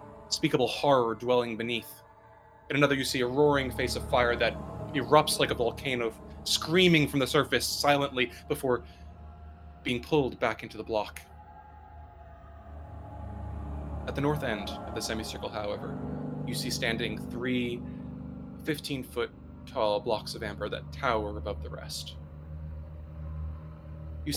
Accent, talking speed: American, 130 wpm